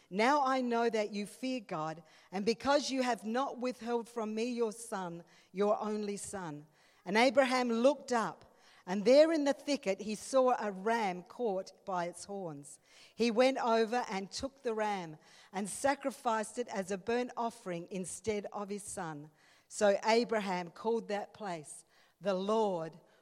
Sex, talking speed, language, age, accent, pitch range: female, 160 wpm, English, 50-69, Australian, 200-260 Hz